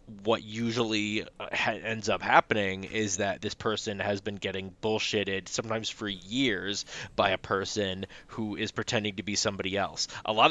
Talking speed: 165 wpm